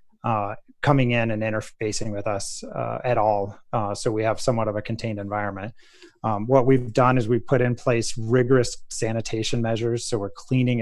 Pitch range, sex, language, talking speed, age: 105-120 Hz, male, English, 190 wpm, 30-49